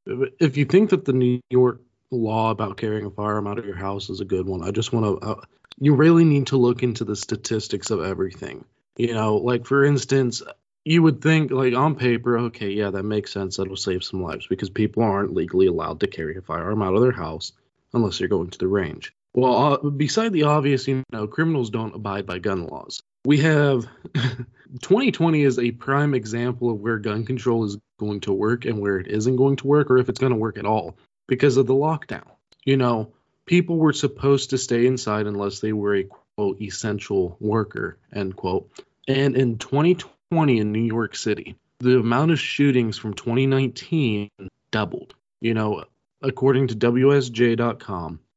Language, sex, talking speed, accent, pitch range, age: English, male, 195 wpm, American, 105-135 Hz, 20-39